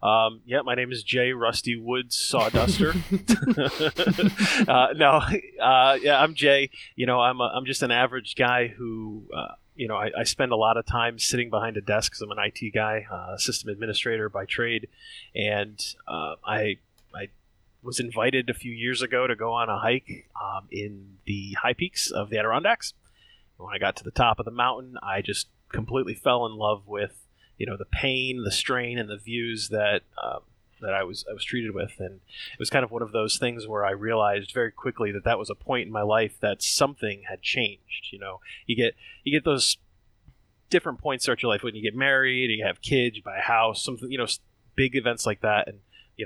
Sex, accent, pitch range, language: male, American, 105-130 Hz, English